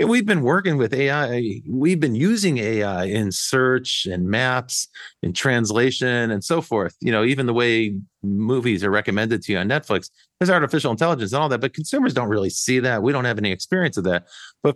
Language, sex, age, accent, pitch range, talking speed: English, male, 40-59, American, 110-150 Hz, 205 wpm